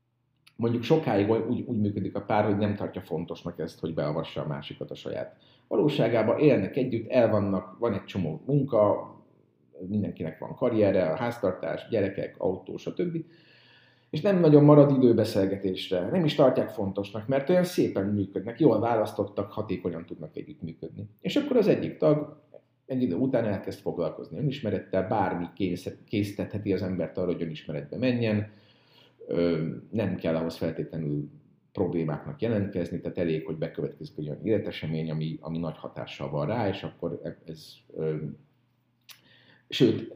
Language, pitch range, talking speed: Hungarian, 95-120 Hz, 140 wpm